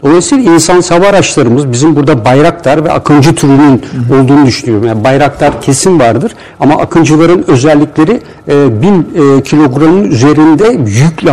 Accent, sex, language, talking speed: native, male, Turkish, 130 wpm